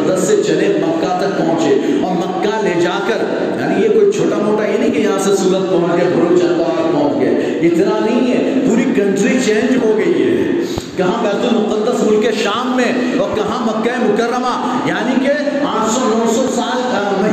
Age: 40-59